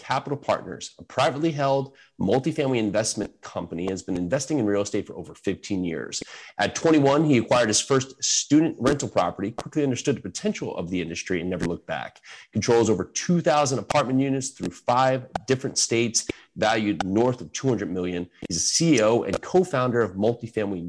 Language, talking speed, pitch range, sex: English, 170 wpm, 95-135 Hz, male